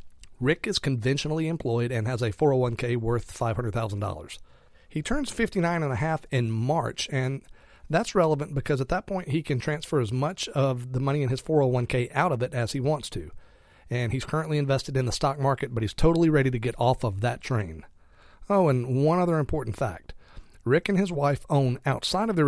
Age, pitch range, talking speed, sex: 40-59, 120-155 Hz, 200 wpm, male